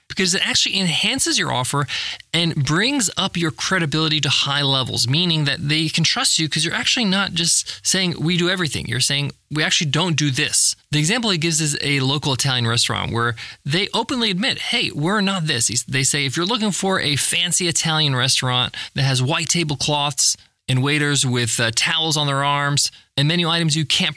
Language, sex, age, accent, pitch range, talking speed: English, male, 20-39, American, 140-185 Hz, 200 wpm